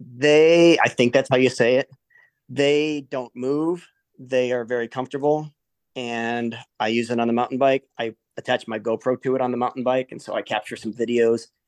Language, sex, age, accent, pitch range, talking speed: English, male, 30-49, American, 120-140 Hz, 200 wpm